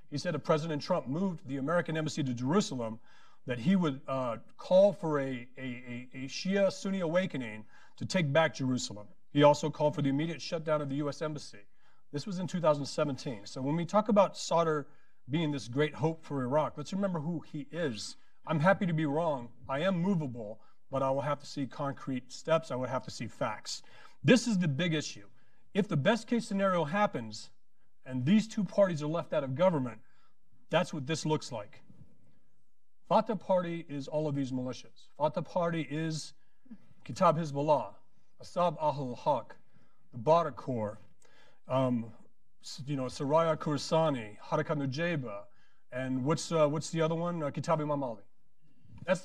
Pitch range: 135-175 Hz